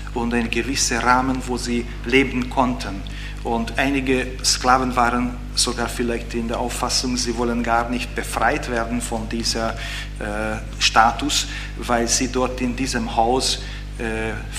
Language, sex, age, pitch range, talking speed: German, male, 40-59, 120-135 Hz, 140 wpm